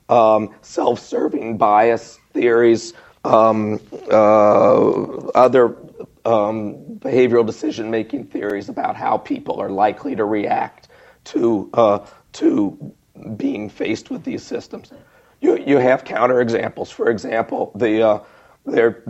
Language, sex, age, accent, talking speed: English, male, 40-59, American, 115 wpm